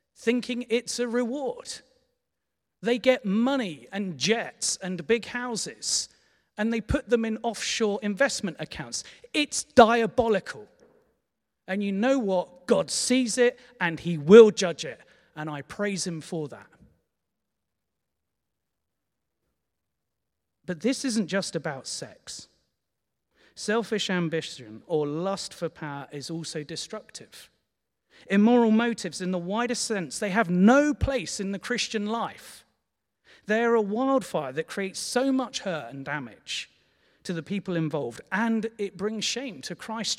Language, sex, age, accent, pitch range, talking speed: English, male, 40-59, British, 175-240 Hz, 135 wpm